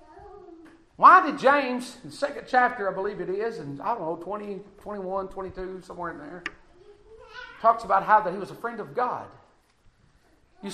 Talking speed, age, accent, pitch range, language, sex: 180 wpm, 50-69, American, 160-220 Hz, English, male